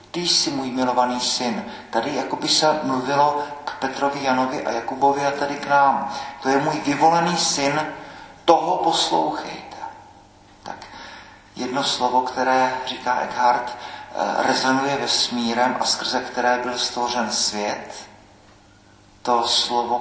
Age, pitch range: 50-69, 120-130 Hz